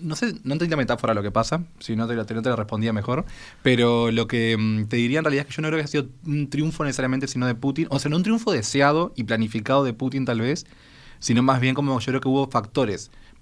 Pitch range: 105-140 Hz